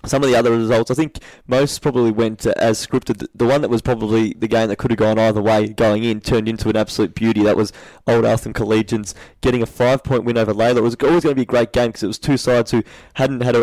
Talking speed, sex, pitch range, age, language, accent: 265 wpm, male, 110-125 Hz, 20-39, English, Australian